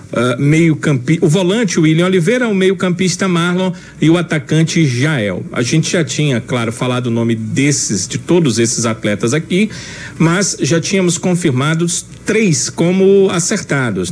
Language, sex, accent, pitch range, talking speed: Portuguese, male, Brazilian, 130-170 Hz, 150 wpm